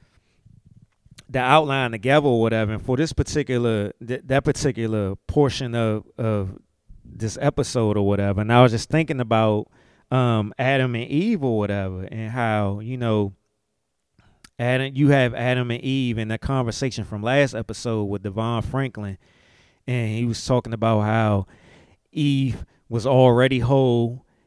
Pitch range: 115-145 Hz